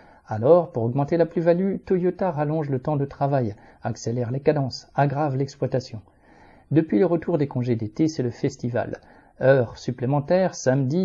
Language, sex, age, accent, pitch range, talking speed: French, male, 50-69, French, 125-155 Hz, 150 wpm